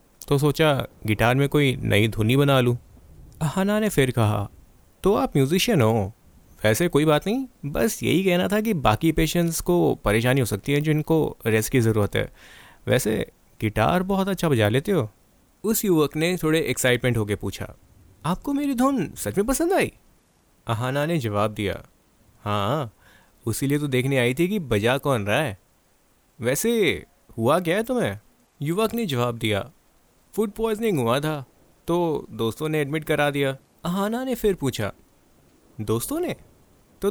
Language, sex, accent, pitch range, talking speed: Hindi, male, native, 110-180 Hz, 160 wpm